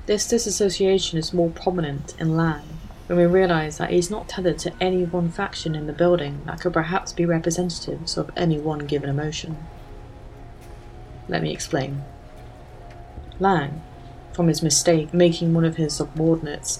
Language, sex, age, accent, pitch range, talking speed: English, female, 30-49, British, 145-175 Hz, 155 wpm